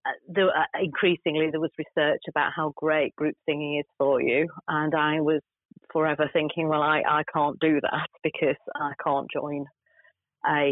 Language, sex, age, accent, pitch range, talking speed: English, female, 40-59, British, 150-170 Hz, 170 wpm